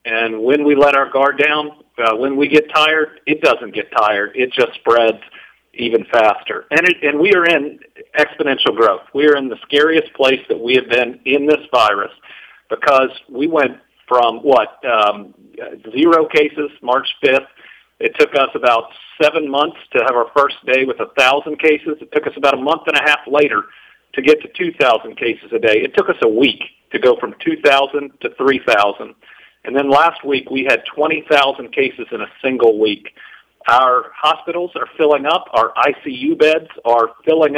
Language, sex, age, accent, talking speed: English, male, 50-69, American, 185 wpm